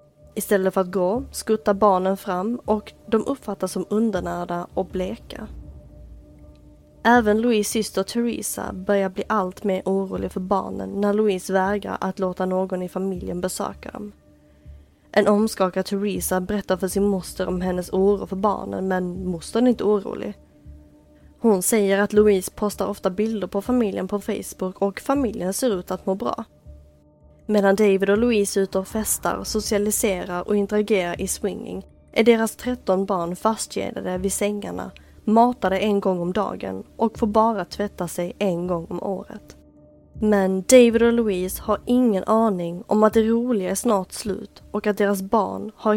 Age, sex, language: 20-39, female, Swedish